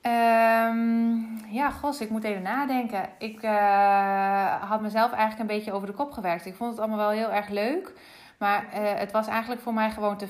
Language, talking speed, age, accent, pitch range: Dutch, 200 wpm, 20-39, Dutch, 200-230 Hz